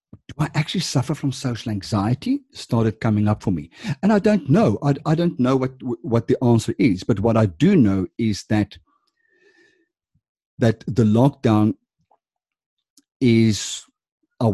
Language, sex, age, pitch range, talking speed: English, male, 50-69, 105-145 Hz, 155 wpm